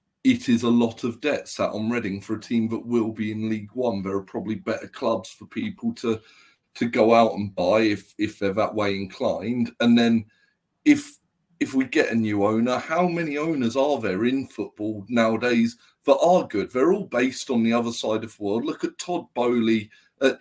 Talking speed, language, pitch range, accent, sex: 210 wpm, English, 110-145 Hz, British, male